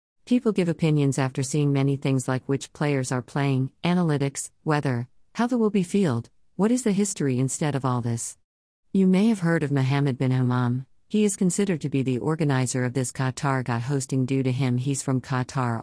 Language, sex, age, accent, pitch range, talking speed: English, female, 50-69, American, 130-160 Hz, 200 wpm